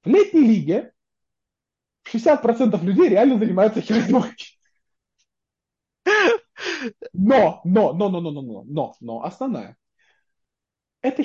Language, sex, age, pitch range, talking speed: Russian, male, 20-39, 170-240 Hz, 100 wpm